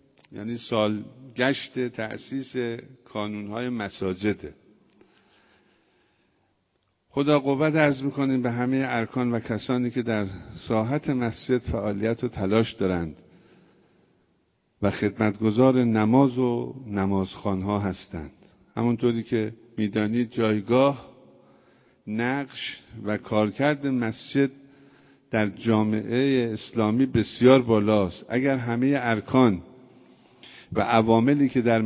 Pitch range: 110-130 Hz